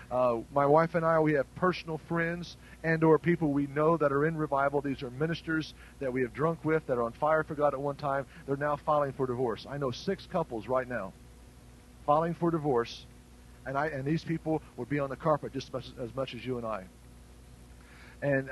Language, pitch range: English, 140-170 Hz